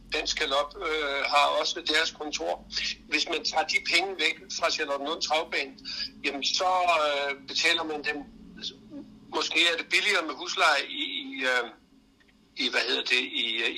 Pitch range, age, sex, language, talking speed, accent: 145-220 Hz, 60-79, male, Danish, 150 wpm, native